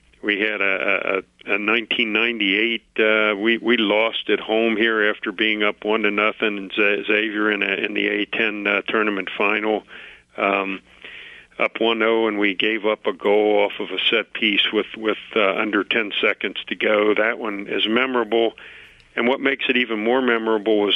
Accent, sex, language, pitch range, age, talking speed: American, male, English, 105-115 Hz, 50-69, 180 wpm